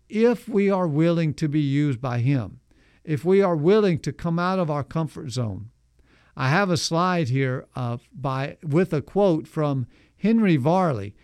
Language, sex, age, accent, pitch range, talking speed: English, male, 50-69, American, 135-180 Hz, 175 wpm